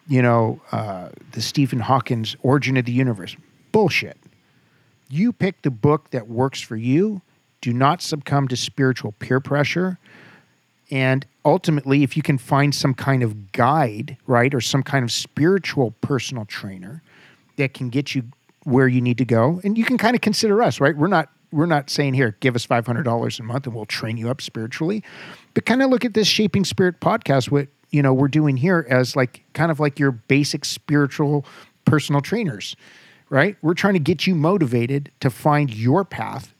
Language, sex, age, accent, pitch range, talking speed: English, male, 50-69, American, 125-155 Hz, 185 wpm